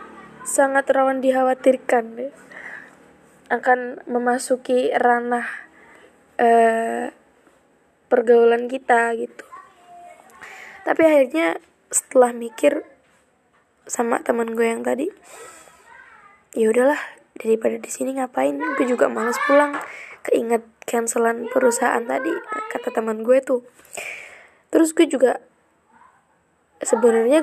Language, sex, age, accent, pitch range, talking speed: Indonesian, female, 10-29, native, 230-265 Hz, 90 wpm